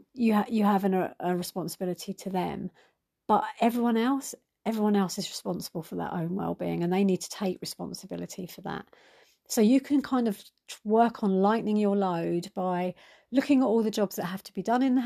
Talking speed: 205 wpm